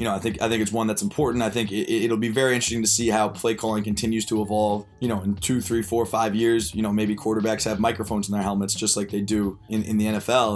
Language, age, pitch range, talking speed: English, 20-39, 105-120 Hz, 280 wpm